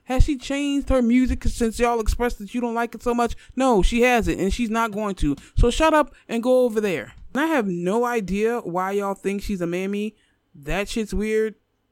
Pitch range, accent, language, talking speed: 175-235 Hz, American, English, 220 wpm